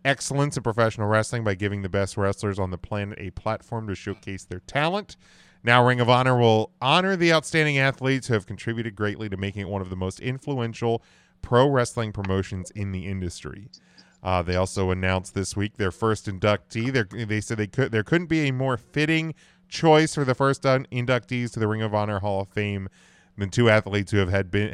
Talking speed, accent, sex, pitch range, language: 205 wpm, American, male, 100-125 Hz, English